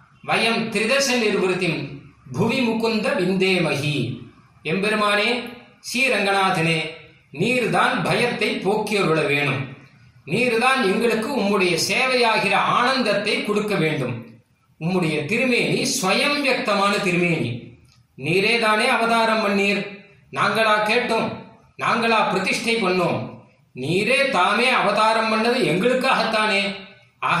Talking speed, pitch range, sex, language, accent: 90 wpm, 165-225 Hz, male, Tamil, native